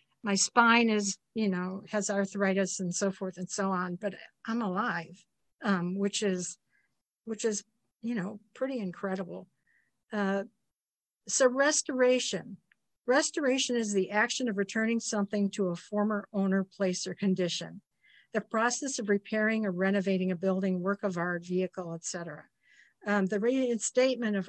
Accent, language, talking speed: American, English, 145 wpm